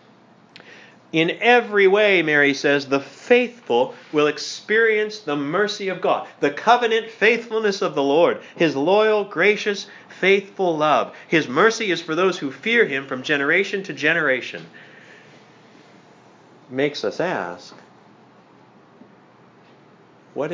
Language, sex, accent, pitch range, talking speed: English, male, American, 135-195 Hz, 115 wpm